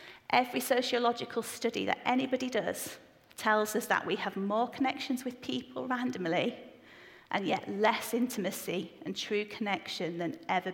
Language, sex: English, female